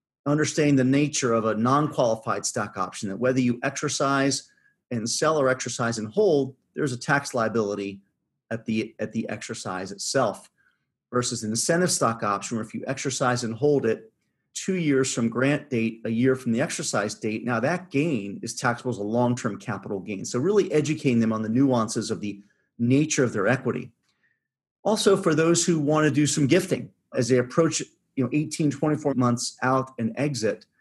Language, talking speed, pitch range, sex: English, 185 wpm, 115-145 Hz, male